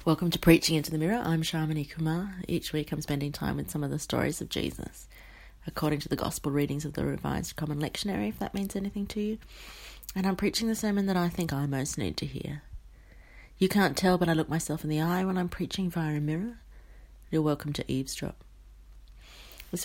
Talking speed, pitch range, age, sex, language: 215 wpm, 155-195 Hz, 30-49, female, English